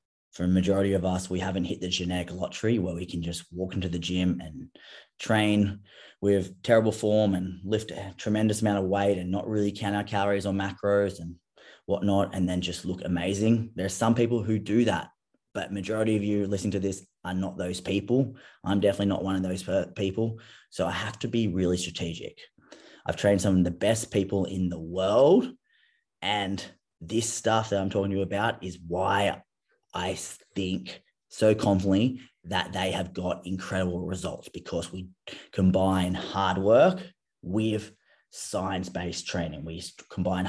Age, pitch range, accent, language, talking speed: 20-39, 90-105 Hz, Australian, English, 175 wpm